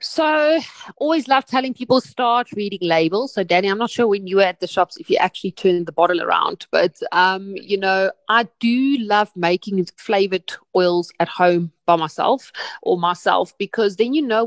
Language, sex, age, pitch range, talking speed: English, female, 30-49, 195-245 Hz, 195 wpm